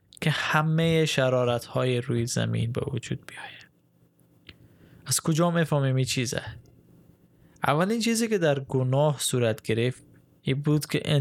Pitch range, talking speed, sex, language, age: 120-150 Hz, 130 wpm, male, Persian, 20-39